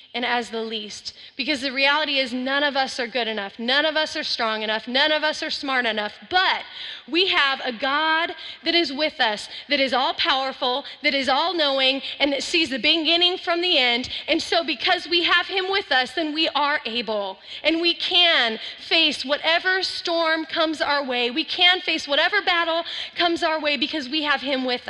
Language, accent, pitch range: English, American, 260-335 Hz